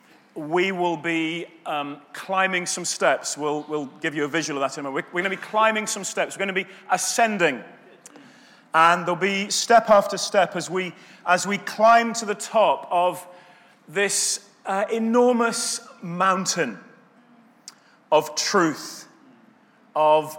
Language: English